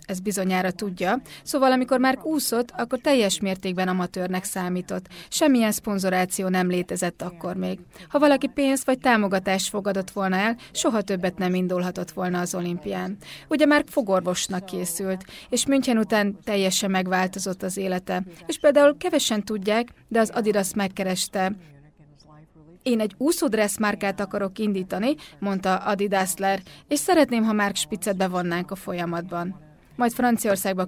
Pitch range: 180-230 Hz